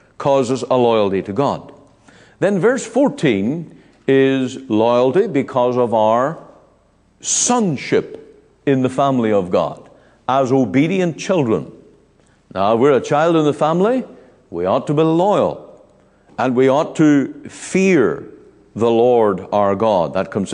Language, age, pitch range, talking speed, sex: English, 60-79, 115-160 Hz, 130 wpm, male